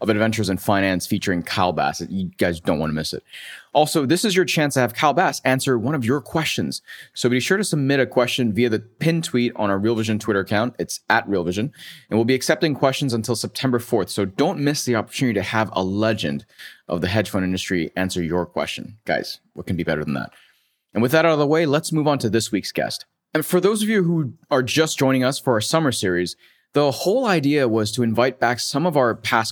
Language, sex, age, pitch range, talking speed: English, male, 30-49, 100-135 Hz, 245 wpm